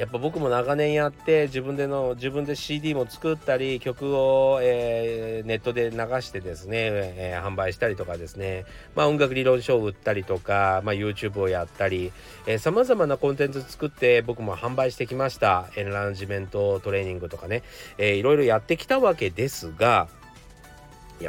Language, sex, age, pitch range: Japanese, male, 40-59, 100-155 Hz